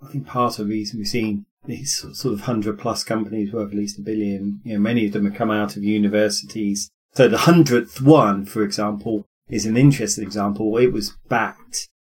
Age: 30-49